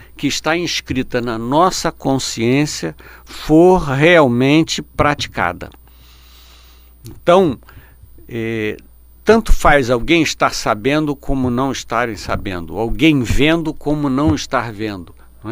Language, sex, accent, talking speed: Portuguese, male, Brazilian, 105 wpm